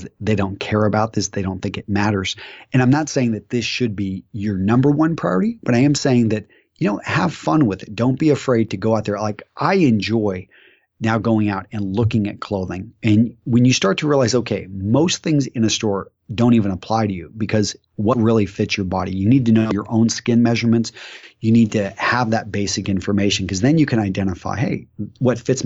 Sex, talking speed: male, 225 wpm